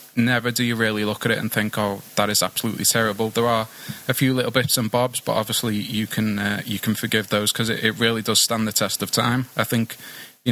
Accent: British